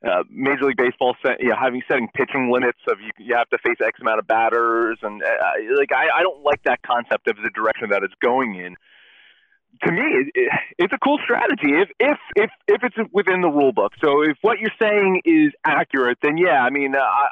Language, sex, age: English, male, 30-49